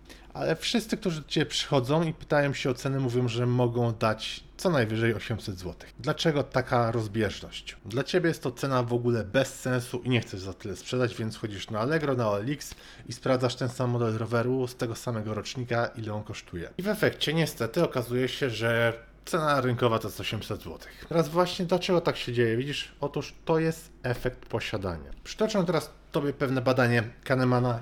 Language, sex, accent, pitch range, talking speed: Polish, male, native, 110-130 Hz, 190 wpm